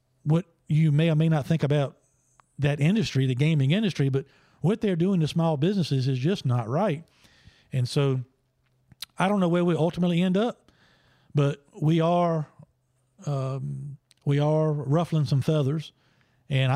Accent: American